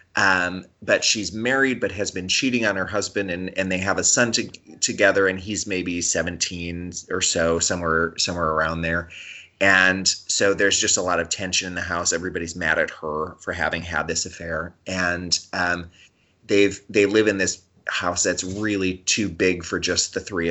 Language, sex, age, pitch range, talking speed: English, male, 30-49, 85-100 Hz, 185 wpm